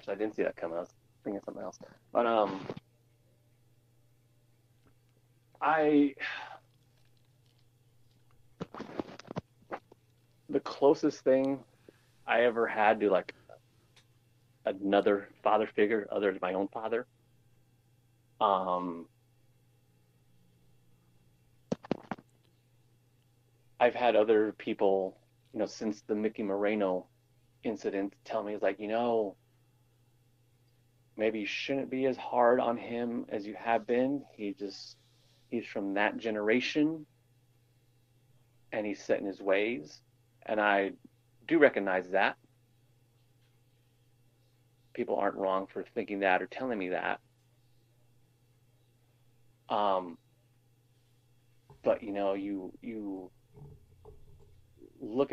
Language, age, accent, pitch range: English, 30-49, American, 110-120 Hz